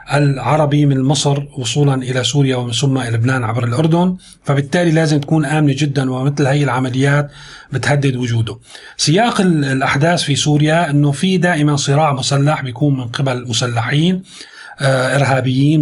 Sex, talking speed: male, 135 wpm